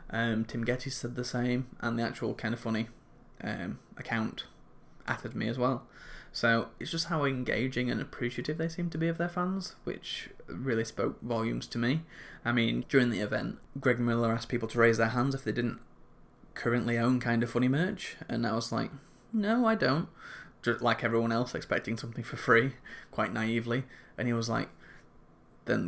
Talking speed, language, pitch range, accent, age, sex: 190 wpm, English, 115-130 Hz, British, 10-29, male